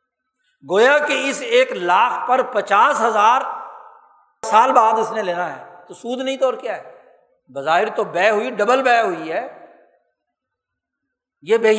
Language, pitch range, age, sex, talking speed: Urdu, 225-290 Hz, 60-79, male, 155 wpm